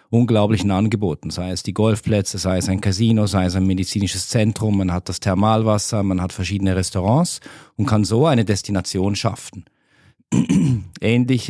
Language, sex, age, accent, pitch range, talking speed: German, male, 40-59, German, 90-115 Hz, 155 wpm